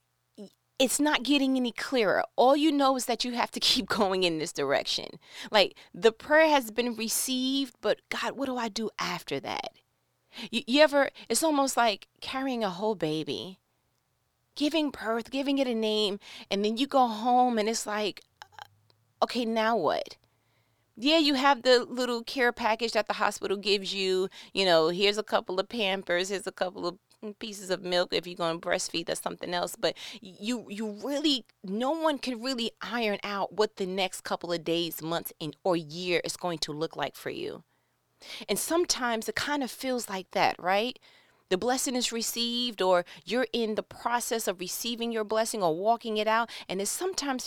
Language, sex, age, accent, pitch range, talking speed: English, female, 30-49, American, 195-265 Hz, 190 wpm